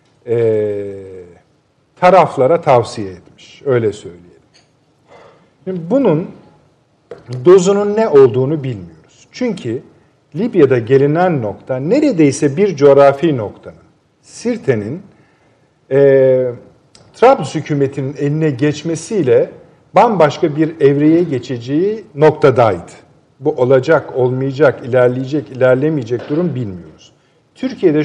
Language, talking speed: Turkish, 80 wpm